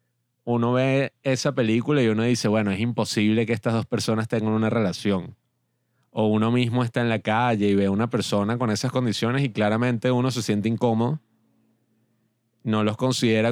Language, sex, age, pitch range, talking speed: Spanish, male, 20-39, 110-125 Hz, 180 wpm